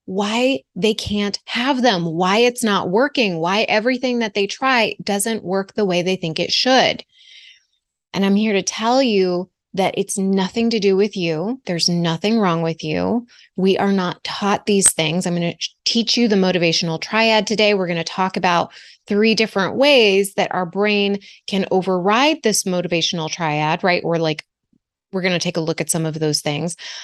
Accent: American